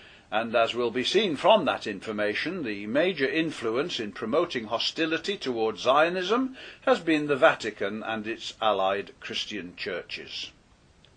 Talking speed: 135 wpm